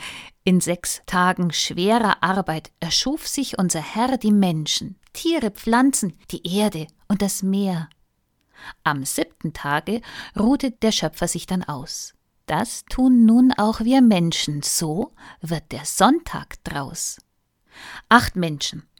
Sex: female